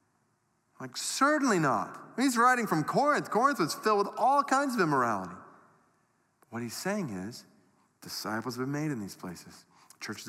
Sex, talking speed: male, 155 wpm